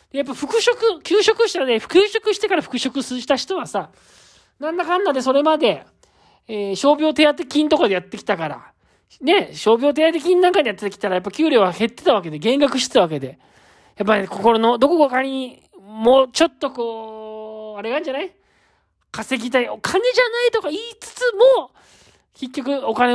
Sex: male